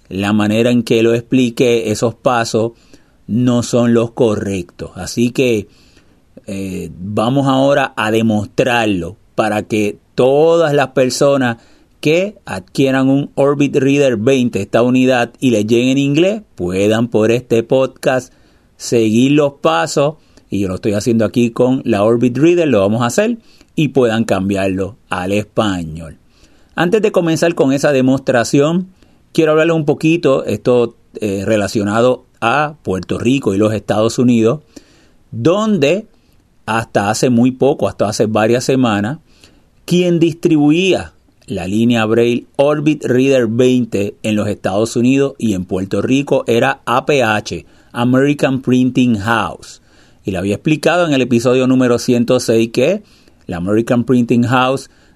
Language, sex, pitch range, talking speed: Spanish, male, 110-140 Hz, 140 wpm